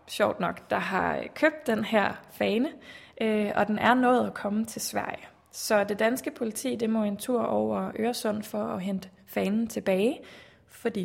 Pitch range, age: 200-230 Hz, 20-39